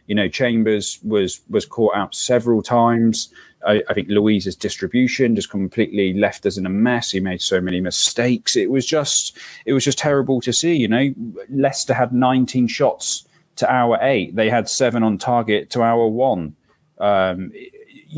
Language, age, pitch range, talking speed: English, 30-49, 110-135 Hz, 175 wpm